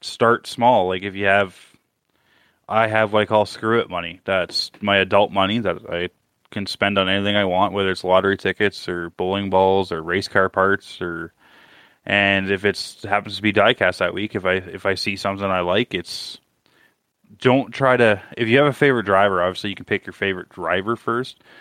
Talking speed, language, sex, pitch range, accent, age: 205 wpm, English, male, 95-110 Hz, American, 20-39